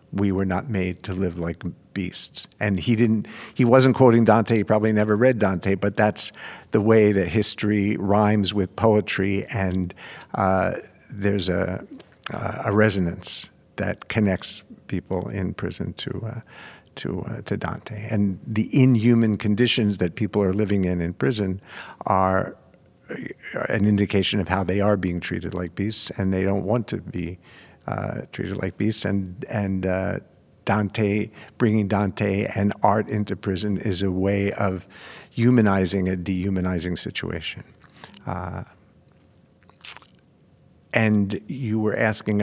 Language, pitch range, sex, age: English, 95-110 Hz, male, 60-79